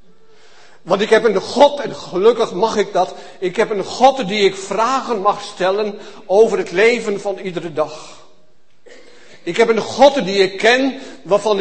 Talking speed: 170 wpm